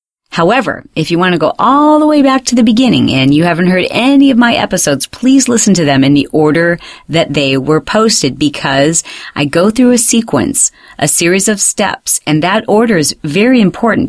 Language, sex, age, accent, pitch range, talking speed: English, female, 40-59, American, 150-230 Hz, 205 wpm